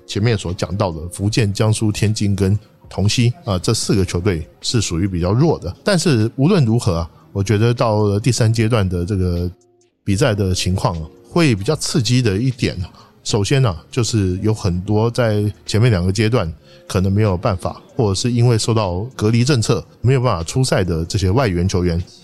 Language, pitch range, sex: Chinese, 95-125 Hz, male